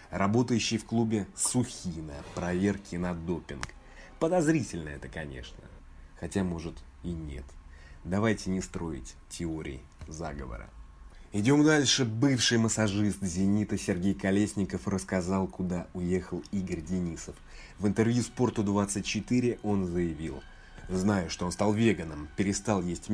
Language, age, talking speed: Russian, 20-39, 115 wpm